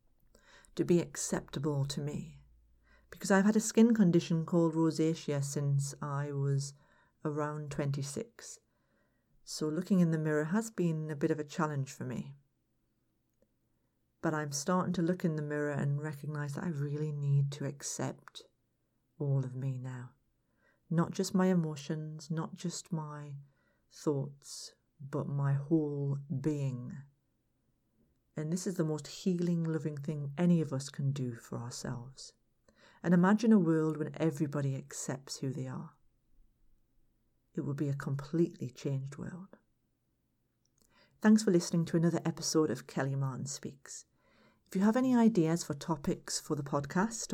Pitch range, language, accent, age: 140-175 Hz, English, British, 40-59